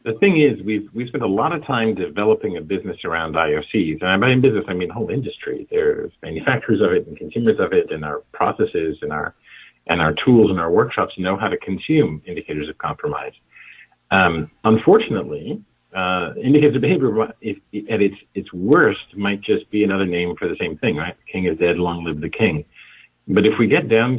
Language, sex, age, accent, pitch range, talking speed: English, male, 50-69, American, 90-150 Hz, 205 wpm